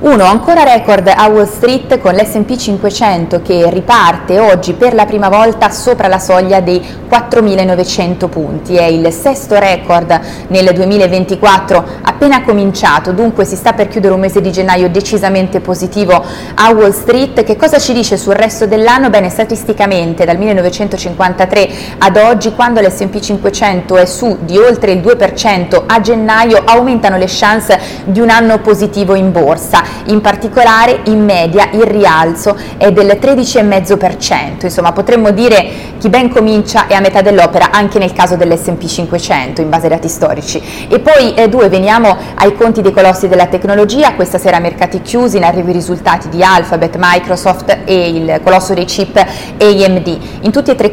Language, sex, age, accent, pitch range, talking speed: Italian, female, 20-39, native, 185-220 Hz, 165 wpm